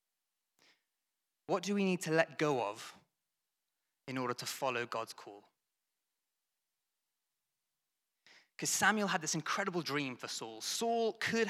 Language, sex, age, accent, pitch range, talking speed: English, male, 20-39, British, 130-170 Hz, 125 wpm